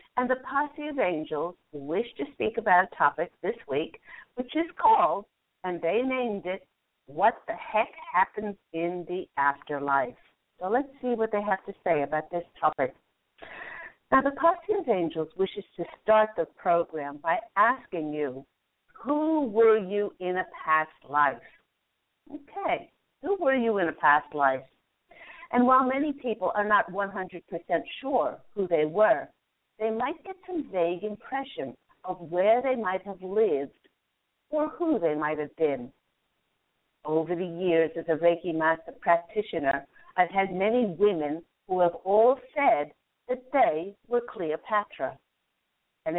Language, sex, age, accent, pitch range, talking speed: English, female, 50-69, American, 165-255 Hz, 150 wpm